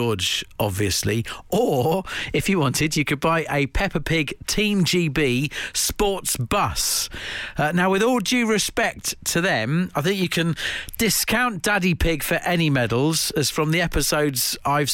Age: 40-59